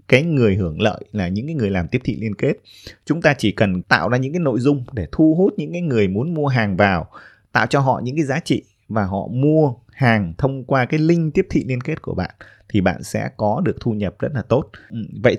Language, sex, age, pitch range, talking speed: Vietnamese, male, 20-39, 105-145 Hz, 255 wpm